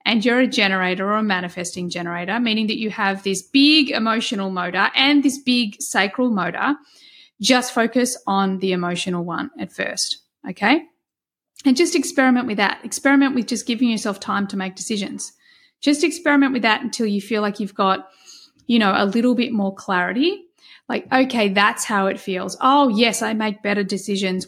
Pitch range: 195-260 Hz